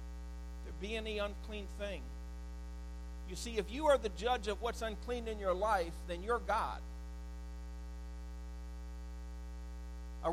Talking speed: 120 wpm